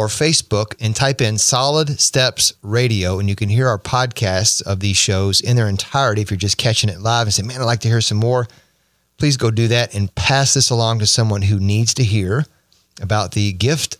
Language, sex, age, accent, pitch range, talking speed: English, male, 30-49, American, 100-125 Hz, 225 wpm